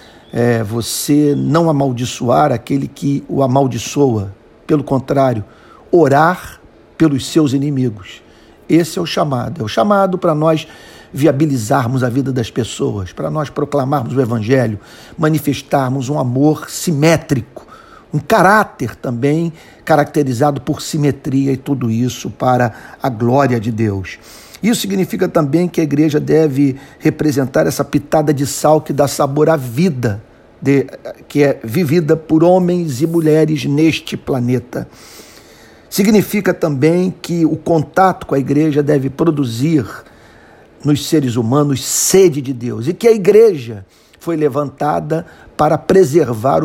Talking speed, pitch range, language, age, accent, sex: 130 wpm, 130-160 Hz, Portuguese, 50-69, Brazilian, male